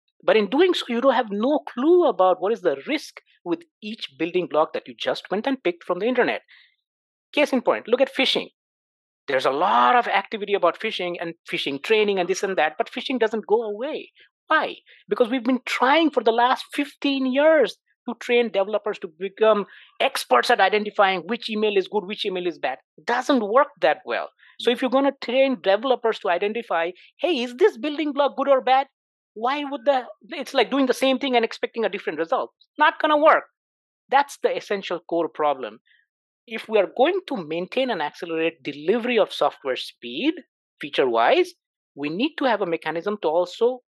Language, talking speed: English, 195 wpm